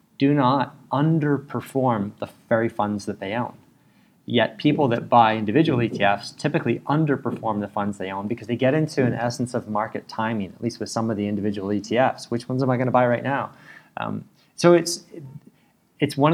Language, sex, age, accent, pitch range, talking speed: English, male, 30-49, American, 105-135 Hz, 190 wpm